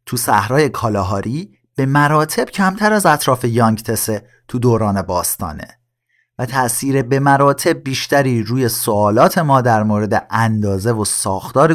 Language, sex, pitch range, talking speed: Persian, male, 110-140 Hz, 130 wpm